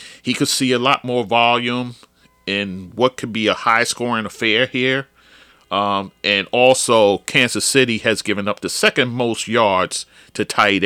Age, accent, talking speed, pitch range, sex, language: 40-59, American, 165 wpm, 90-125 Hz, male, English